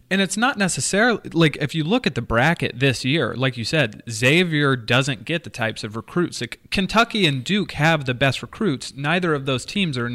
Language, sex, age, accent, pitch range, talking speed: English, male, 30-49, American, 120-150 Hz, 215 wpm